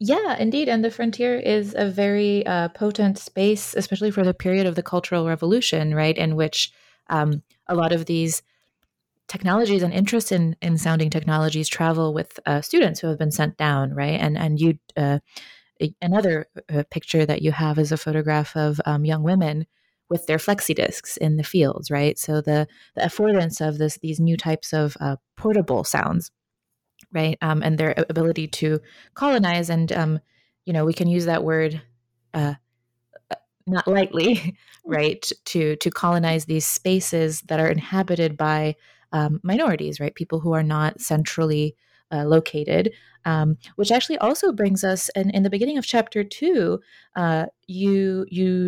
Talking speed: 170 wpm